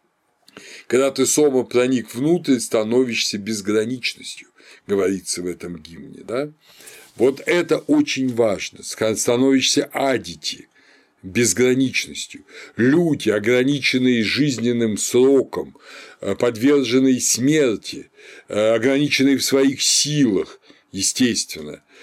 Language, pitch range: Russian, 115-145 Hz